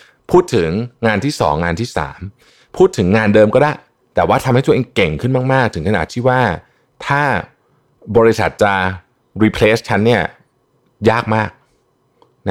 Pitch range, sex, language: 90-120 Hz, male, Thai